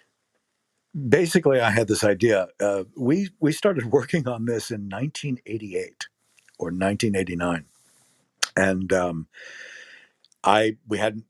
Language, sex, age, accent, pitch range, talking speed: English, male, 50-69, American, 95-130 Hz, 110 wpm